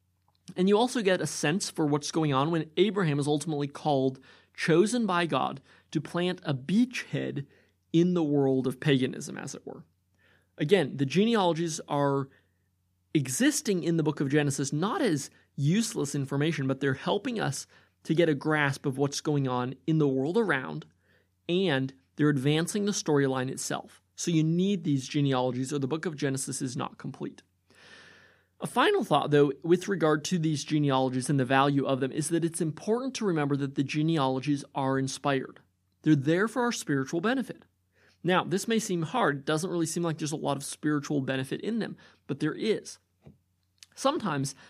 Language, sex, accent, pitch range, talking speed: English, male, American, 135-175 Hz, 175 wpm